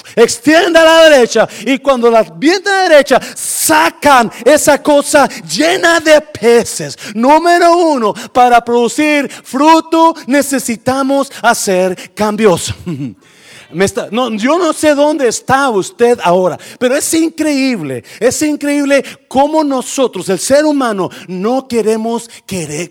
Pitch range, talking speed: 220-295 Hz, 125 wpm